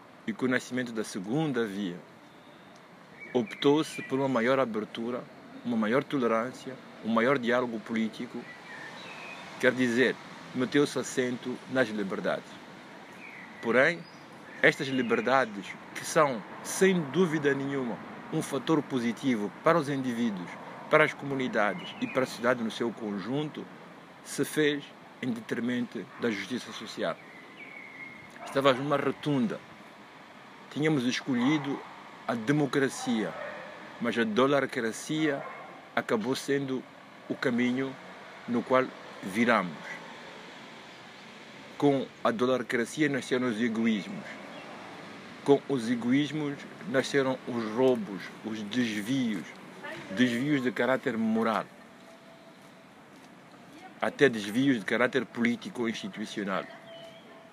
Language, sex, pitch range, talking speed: Portuguese, male, 125-155 Hz, 100 wpm